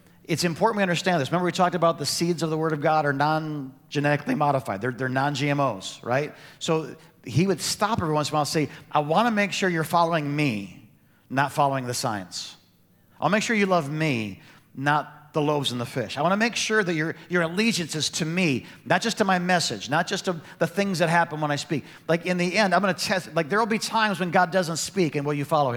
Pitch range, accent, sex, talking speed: 135-170 Hz, American, male, 245 wpm